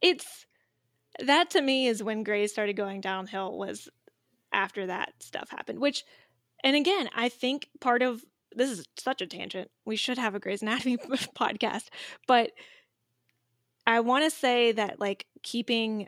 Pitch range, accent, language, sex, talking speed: 200-245 Hz, American, English, female, 155 wpm